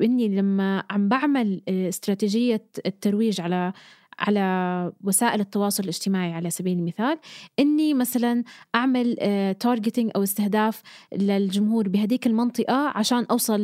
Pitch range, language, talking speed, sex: 195-235 Hz, Arabic, 105 wpm, female